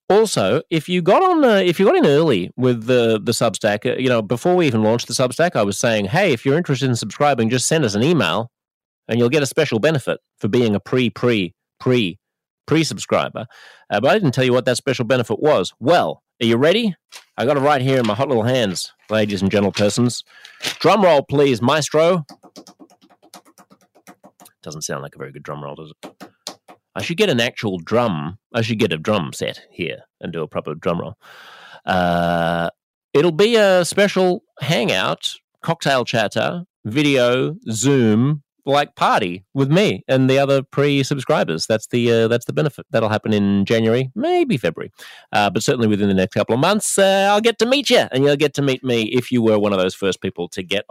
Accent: Australian